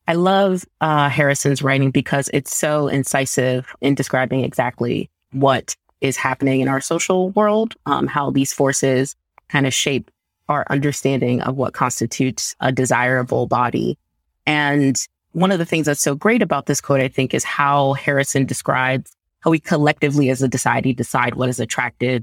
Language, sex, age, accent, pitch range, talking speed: English, female, 30-49, American, 130-150 Hz, 165 wpm